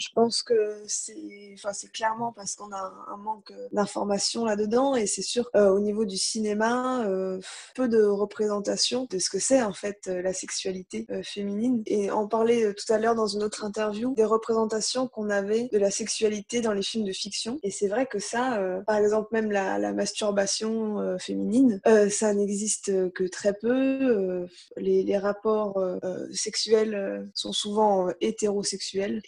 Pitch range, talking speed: 200-230 Hz, 185 wpm